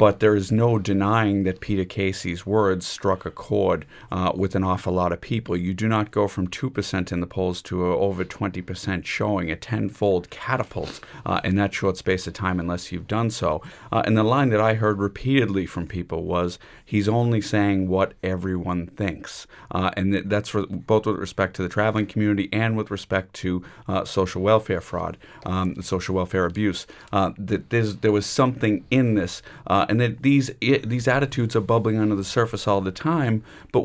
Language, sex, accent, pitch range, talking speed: English, male, American, 95-115 Hz, 200 wpm